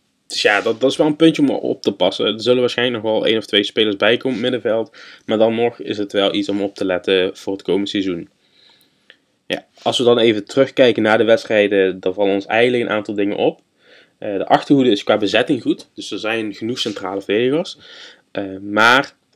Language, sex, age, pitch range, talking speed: Dutch, male, 20-39, 100-115 Hz, 215 wpm